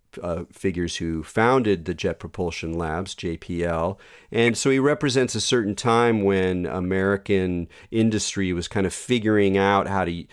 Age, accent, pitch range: 40-59, American, 85-100 Hz